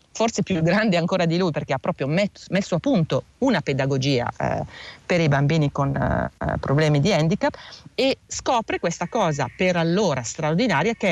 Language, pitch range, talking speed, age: Italian, 145-185 Hz, 165 wpm, 40-59